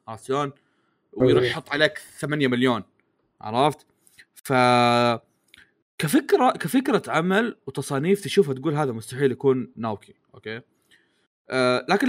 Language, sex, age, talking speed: Arabic, male, 20-39, 95 wpm